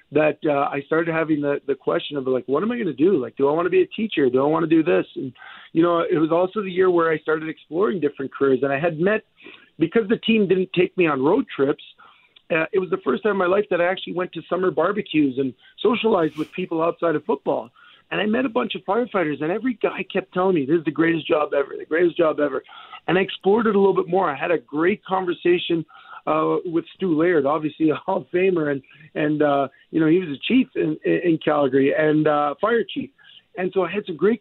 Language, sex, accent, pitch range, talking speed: English, male, American, 155-210 Hz, 260 wpm